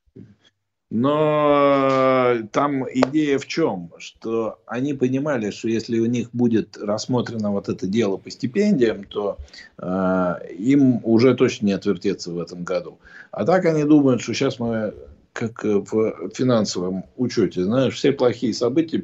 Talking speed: 140 wpm